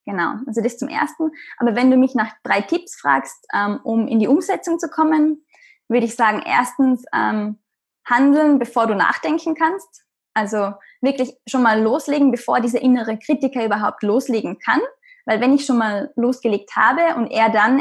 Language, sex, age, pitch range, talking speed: German, female, 10-29, 225-285 Hz, 175 wpm